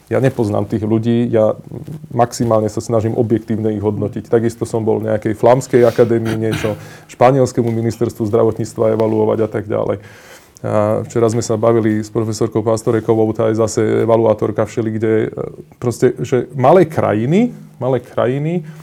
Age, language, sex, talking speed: 20-39, Slovak, male, 145 wpm